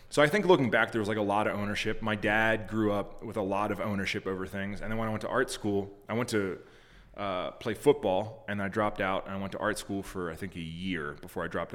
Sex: male